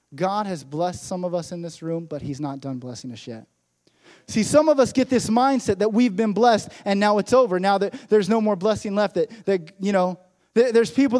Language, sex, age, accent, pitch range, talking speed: English, male, 20-39, American, 135-225 Hz, 235 wpm